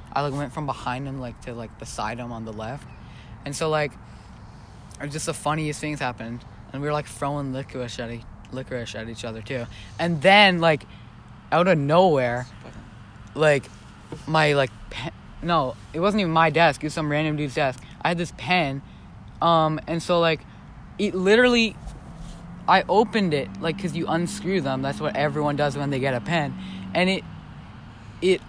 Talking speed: 185 wpm